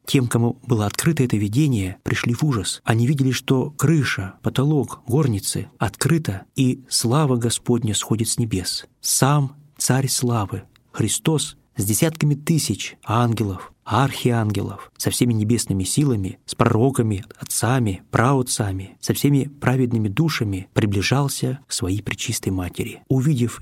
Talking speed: 125 wpm